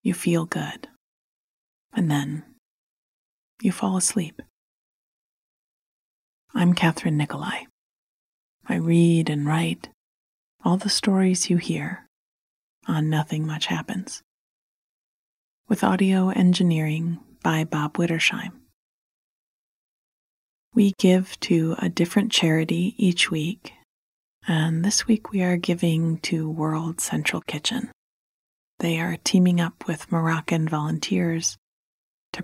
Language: English